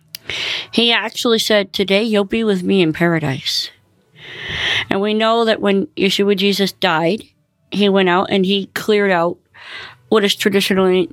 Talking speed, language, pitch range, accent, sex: 150 wpm, English, 165-220 Hz, American, female